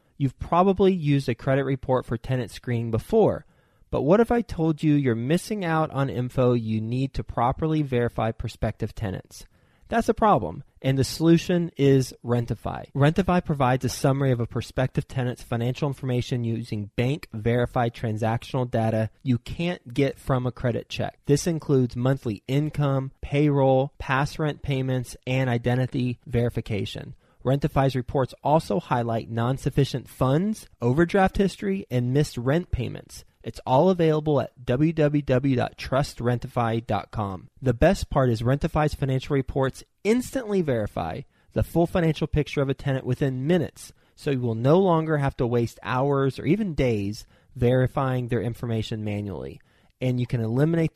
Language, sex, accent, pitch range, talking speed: English, male, American, 120-150 Hz, 145 wpm